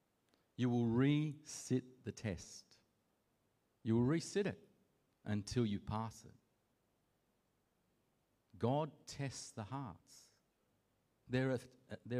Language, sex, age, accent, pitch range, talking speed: English, male, 50-69, Australian, 100-150 Hz, 90 wpm